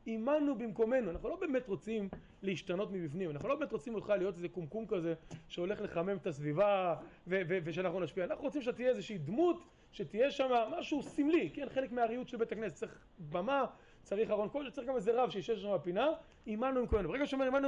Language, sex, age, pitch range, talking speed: Hebrew, male, 30-49, 190-245 Hz, 185 wpm